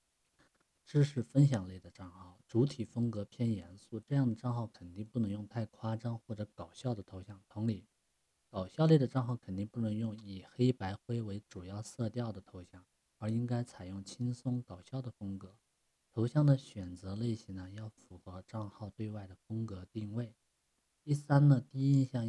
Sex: male